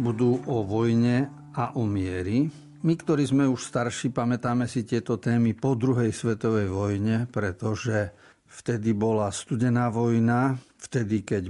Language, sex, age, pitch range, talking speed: Slovak, male, 50-69, 105-125 Hz, 135 wpm